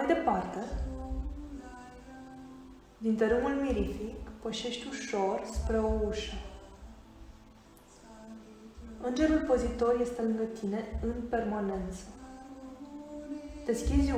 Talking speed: 75 wpm